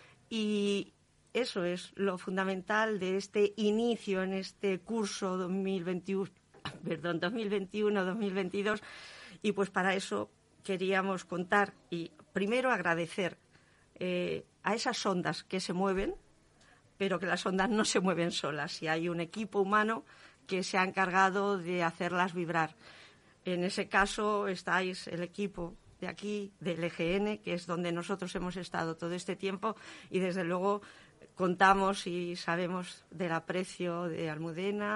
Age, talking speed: 40-59, 135 wpm